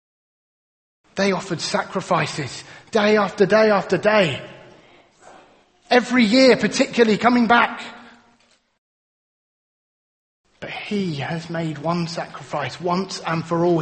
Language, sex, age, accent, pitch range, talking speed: English, male, 30-49, British, 165-250 Hz, 100 wpm